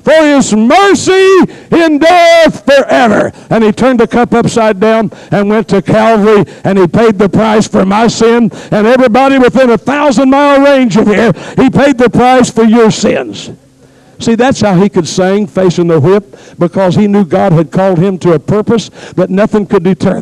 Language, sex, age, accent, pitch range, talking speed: English, male, 60-79, American, 185-245 Hz, 190 wpm